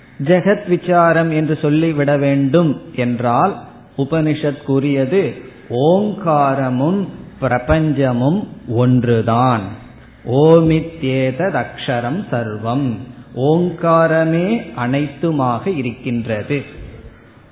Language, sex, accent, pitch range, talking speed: Tamil, male, native, 130-170 Hz, 55 wpm